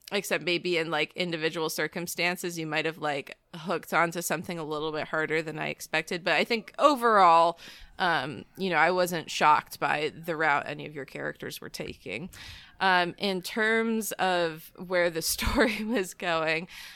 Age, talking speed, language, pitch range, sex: 20-39, 170 wpm, English, 160-185 Hz, female